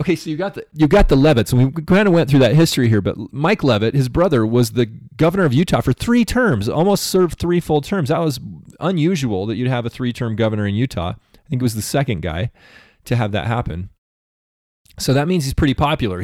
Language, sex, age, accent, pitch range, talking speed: English, male, 30-49, American, 100-145 Hz, 235 wpm